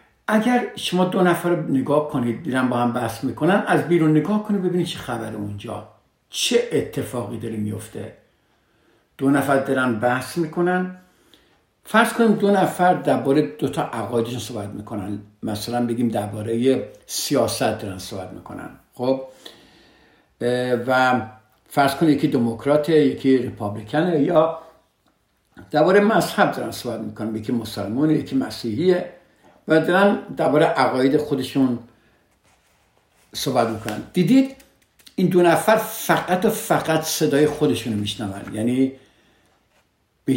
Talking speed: 120 wpm